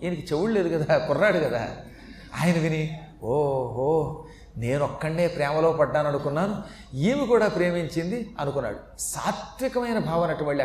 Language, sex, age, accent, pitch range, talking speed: Telugu, male, 30-49, native, 155-210 Hz, 105 wpm